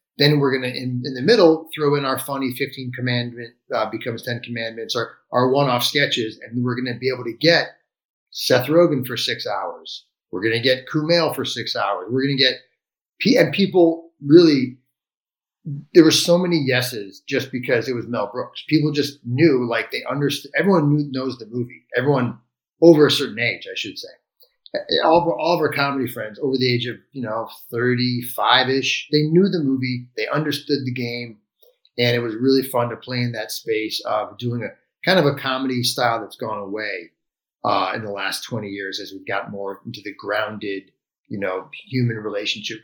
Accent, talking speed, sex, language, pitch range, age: American, 190 wpm, male, English, 115-145 Hz, 30-49